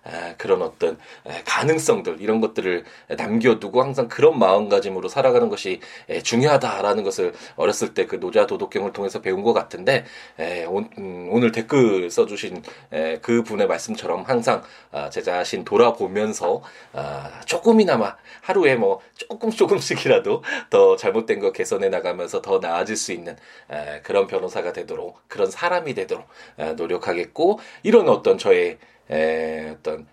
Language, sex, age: Korean, male, 20-39